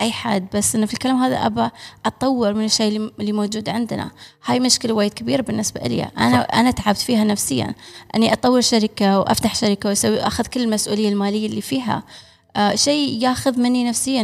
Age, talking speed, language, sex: 20-39, 175 wpm, Arabic, female